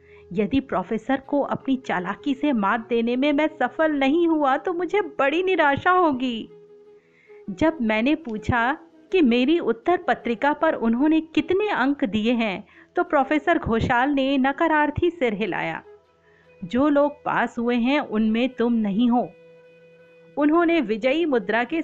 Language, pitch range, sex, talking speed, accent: Hindi, 225-325 Hz, female, 140 wpm, native